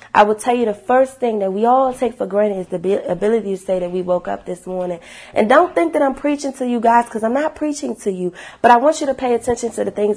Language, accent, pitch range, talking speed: English, American, 180-230 Hz, 290 wpm